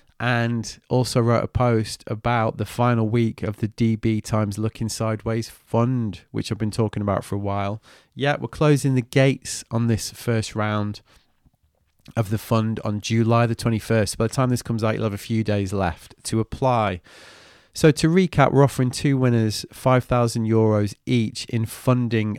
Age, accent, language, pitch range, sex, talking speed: 30-49, British, English, 105-125 Hz, male, 175 wpm